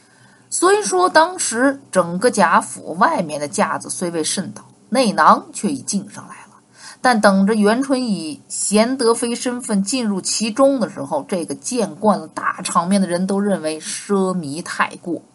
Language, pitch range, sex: Chinese, 180-260 Hz, female